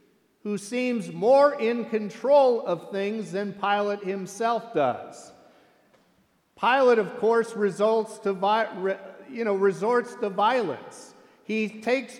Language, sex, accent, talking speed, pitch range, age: English, male, American, 95 wpm, 170-220 Hz, 50-69